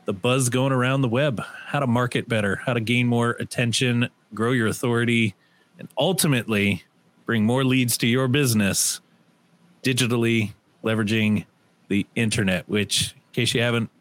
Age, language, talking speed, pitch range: 30-49, English, 150 wpm, 110-140 Hz